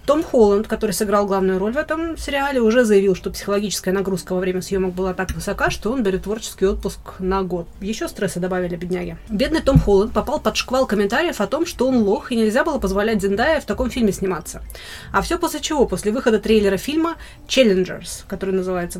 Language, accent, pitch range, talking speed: Russian, native, 190-235 Hz, 200 wpm